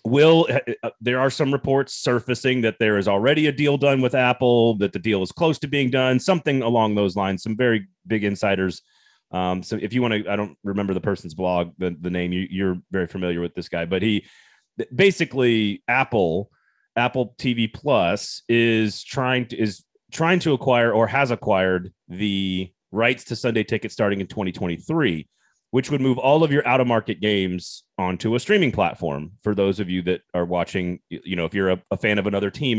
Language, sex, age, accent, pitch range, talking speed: English, male, 30-49, American, 100-130 Hz, 200 wpm